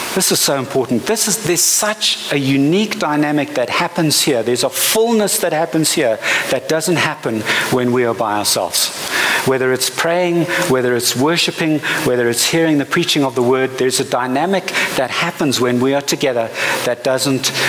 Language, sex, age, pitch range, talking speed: English, male, 60-79, 130-170 Hz, 180 wpm